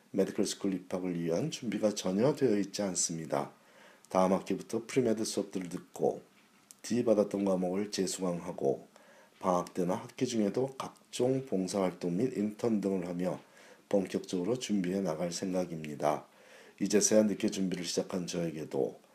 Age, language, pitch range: 40-59, Korean, 85-105 Hz